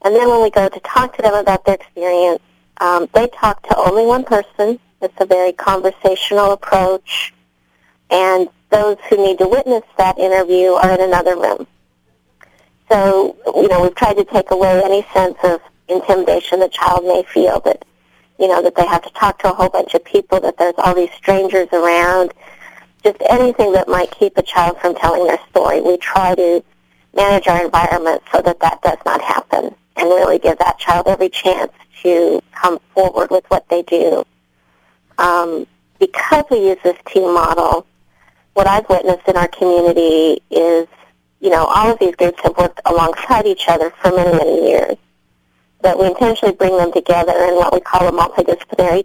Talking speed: 185 wpm